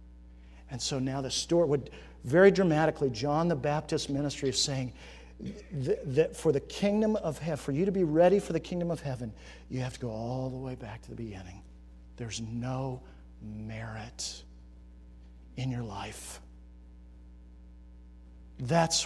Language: English